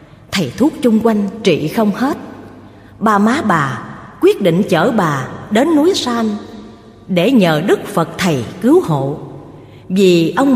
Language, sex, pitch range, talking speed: Vietnamese, female, 170-265 Hz, 150 wpm